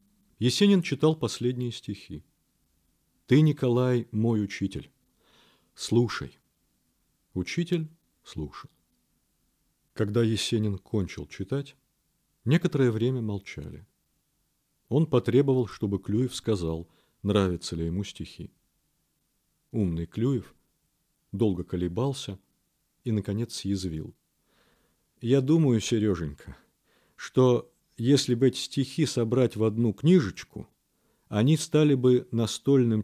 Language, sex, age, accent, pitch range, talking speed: Russian, male, 40-59, native, 95-135 Hz, 90 wpm